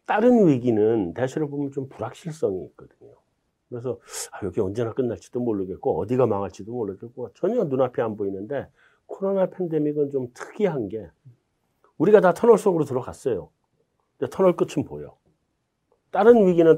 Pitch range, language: 120-170 Hz, Korean